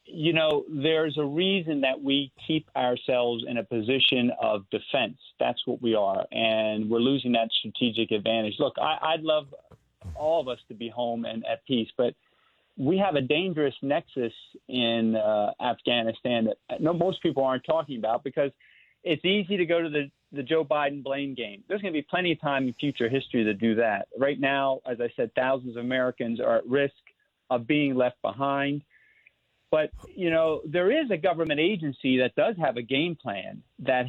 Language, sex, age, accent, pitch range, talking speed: English, male, 40-59, American, 125-160 Hz, 185 wpm